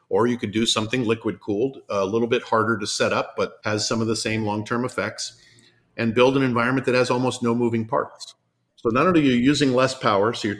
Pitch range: 100-120 Hz